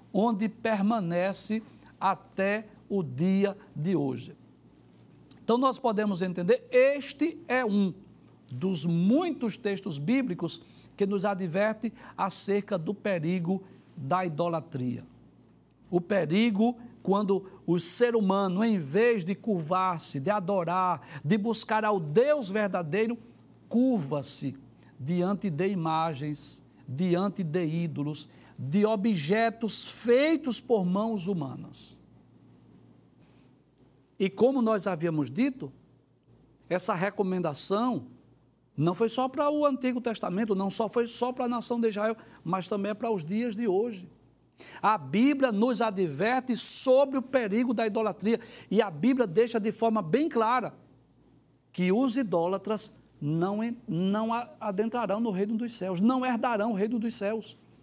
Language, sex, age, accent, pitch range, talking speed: Portuguese, male, 60-79, Brazilian, 175-230 Hz, 125 wpm